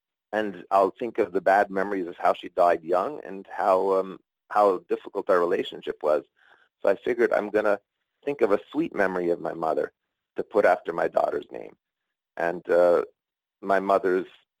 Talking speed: 175 wpm